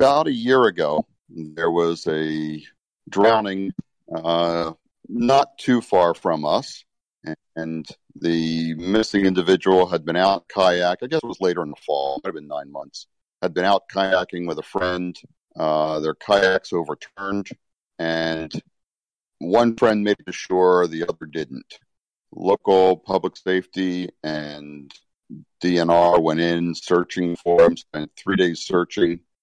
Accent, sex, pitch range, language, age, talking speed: American, male, 80-90 Hz, English, 50-69, 145 wpm